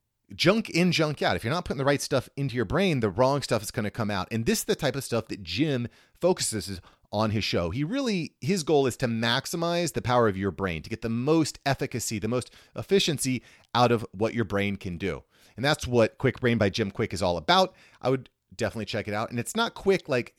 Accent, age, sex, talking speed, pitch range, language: American, 30-49, male, 245 wpm, 105-145 Hz, English